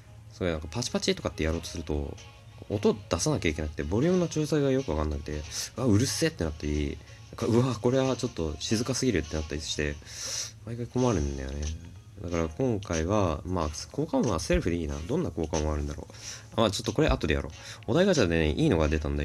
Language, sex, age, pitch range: Japanese, male, 20-39, 80-115 Hz